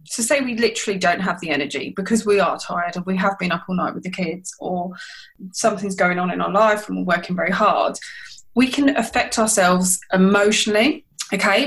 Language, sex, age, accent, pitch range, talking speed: English, female, 20-39, British, 190-230 Hz, 210 wpm